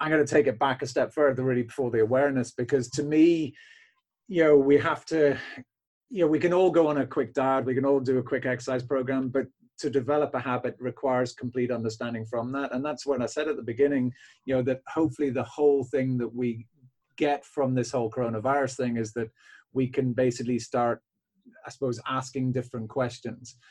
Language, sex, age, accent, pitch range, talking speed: English, male, 30-49, British, 125-145 Hz, 210 wpm